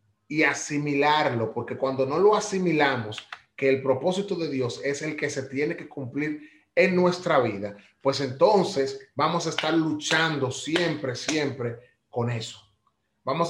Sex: male